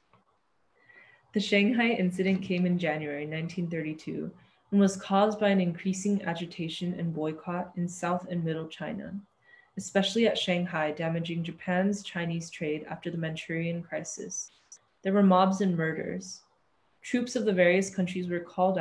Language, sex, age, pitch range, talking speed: English, female, 20-39, 170-195 Hz, 140 wpm